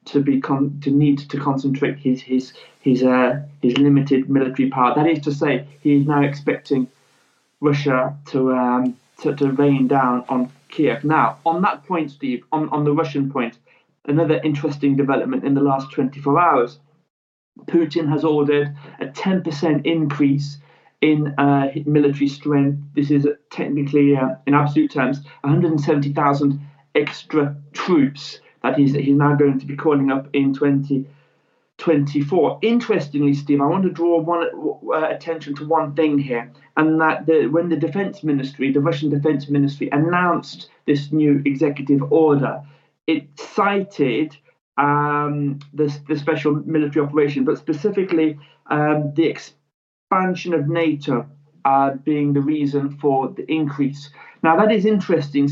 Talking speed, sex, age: 145 wpm, male, 30-49